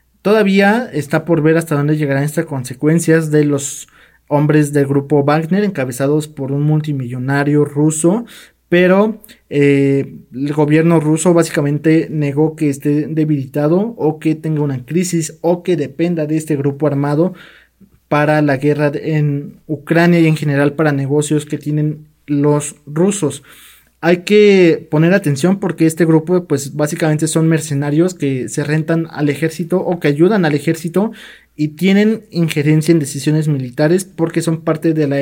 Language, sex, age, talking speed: Spanish, male, 20-39, 150 wpm